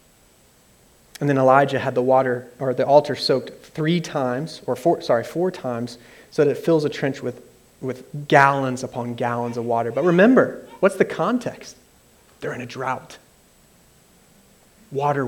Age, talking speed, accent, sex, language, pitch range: 30-49, 155 wpm, American, male, English, 125-160 Hz